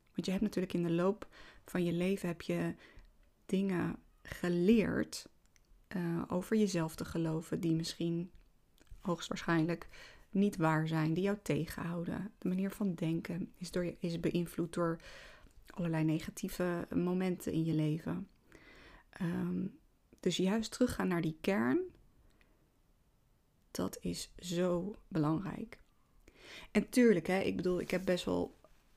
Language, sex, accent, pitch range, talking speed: Dutch, female, Dutch, 165-200 Hz, 135 wpm